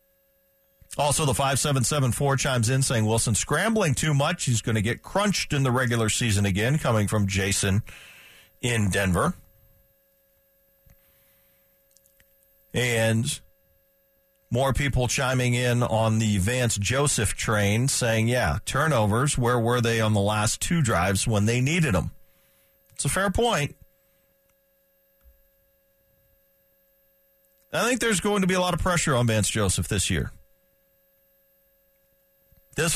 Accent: American